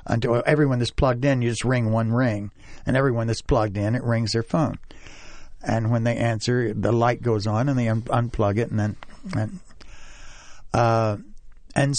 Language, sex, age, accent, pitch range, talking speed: English, male, 60-79, American, 115-140 Hz, 175 wpm